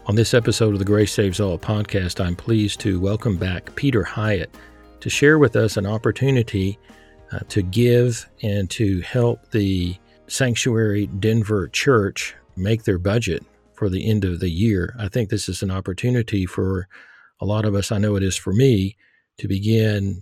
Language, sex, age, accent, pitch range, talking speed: English, male, 40-59, American, 95-110 Hz, 175 wpm